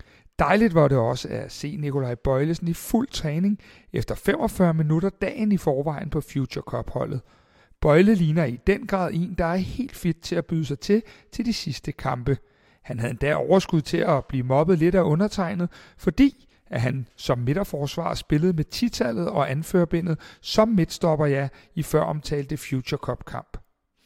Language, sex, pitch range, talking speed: Danish, male, 135-190 Hz, 165 wpm